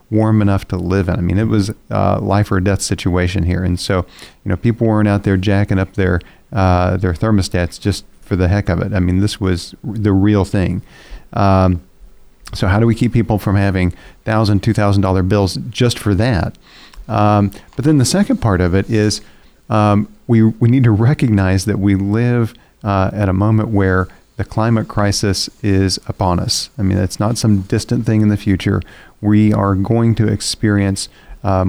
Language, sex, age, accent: English, male, 40-59, American